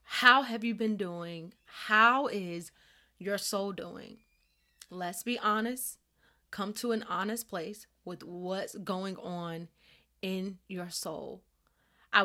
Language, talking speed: English, 125 wpm